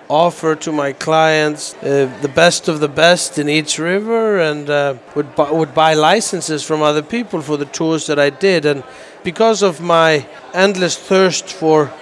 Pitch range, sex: 145-170 Hz, male